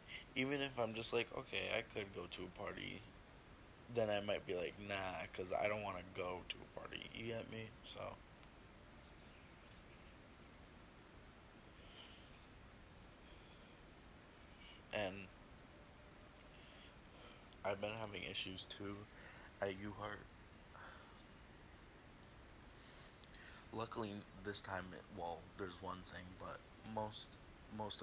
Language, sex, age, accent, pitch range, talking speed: English, male, 20-39, American, 95-105 Hz, 110 wpm